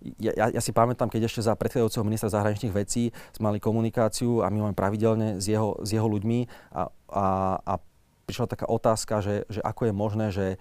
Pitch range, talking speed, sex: 95-110 Hz, 205 wpm, male